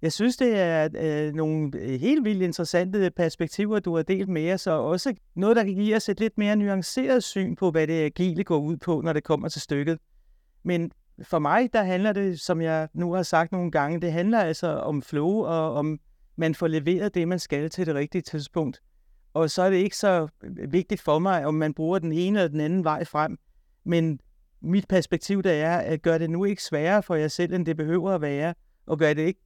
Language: Danish